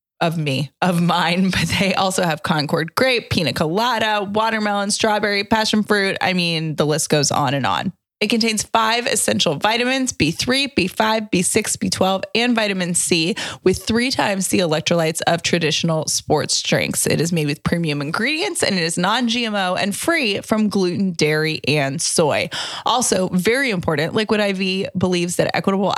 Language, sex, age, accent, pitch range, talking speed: English, female, 20-39, American, 170-210 Hz, 160 wpm